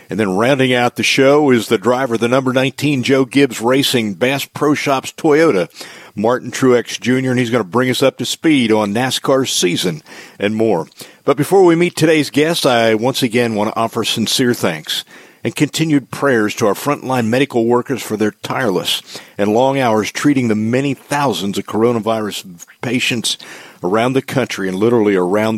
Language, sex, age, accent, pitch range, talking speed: English, male, 50-69, American, 110-140 Hz, 180 wpm